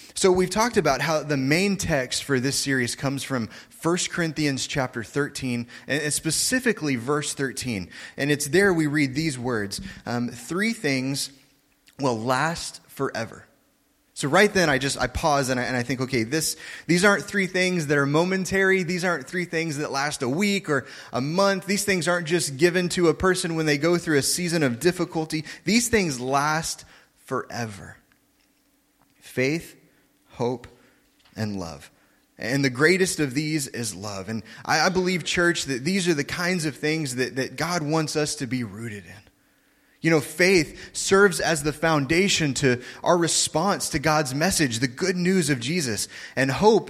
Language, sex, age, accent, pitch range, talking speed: English, male, 20-39, American, 130-175 Hz, 175 wpm